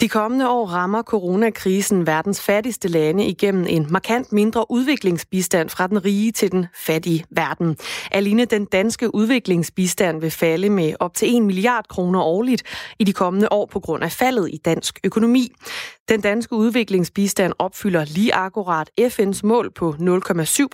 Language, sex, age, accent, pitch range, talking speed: Danish, female, 20-39, native, 175-225 Hz, 155 wpm